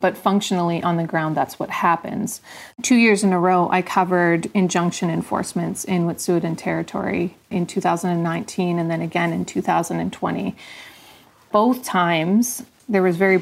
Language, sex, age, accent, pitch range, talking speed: English, female, 30-49, American, 170-195 Hz, 145 wpm